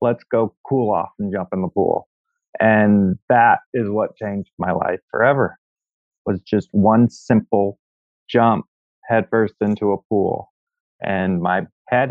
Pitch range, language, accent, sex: 105-140 Hz, English, American, male